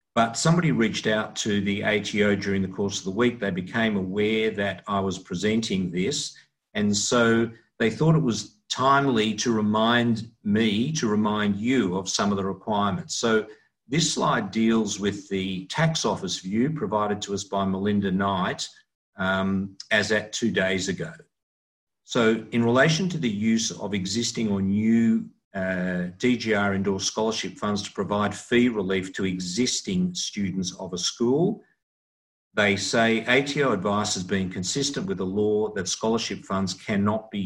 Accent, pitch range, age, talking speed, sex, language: Australian, 95-115 Hz, 50-69, 160 wpm, male, English